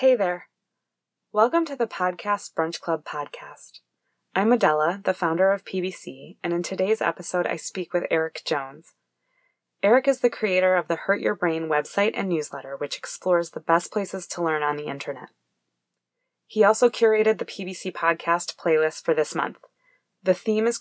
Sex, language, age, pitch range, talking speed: female, English, 20-39, 165-220 Hz, 170 wpm